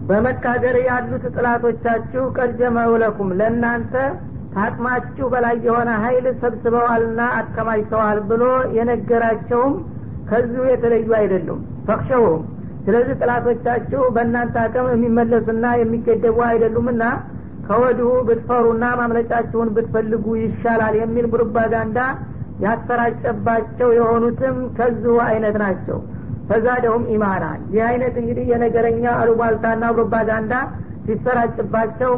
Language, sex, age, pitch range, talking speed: Amharic, female, 50-69, 225-240 Hz, 85 wpm